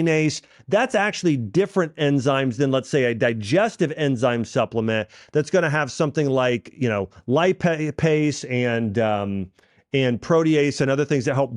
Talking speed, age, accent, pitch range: 150 wpm, 40-59, American, 120-160 Hz